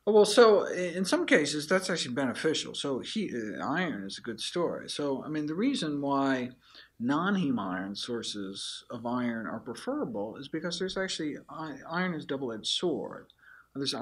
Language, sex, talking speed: English, male, 170 wpm